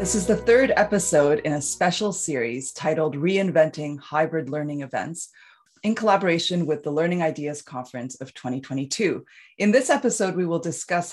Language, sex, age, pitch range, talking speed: English, female, 30-49, 145-185 Hz, 155 wpm